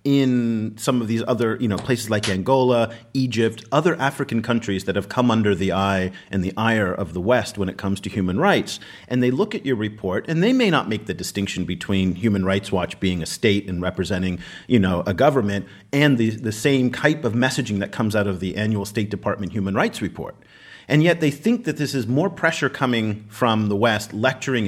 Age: 40-59